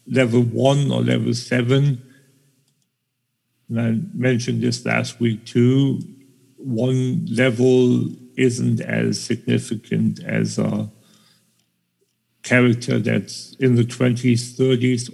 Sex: male